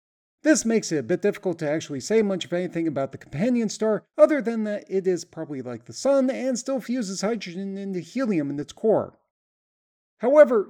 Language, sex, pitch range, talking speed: English, male, 165-230 Hz, 195 wpm